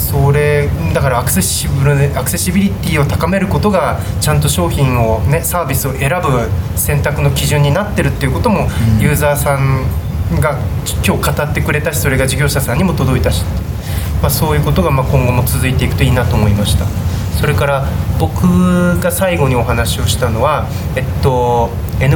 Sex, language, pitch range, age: male, Japanese, 95-140 Hz, 20-39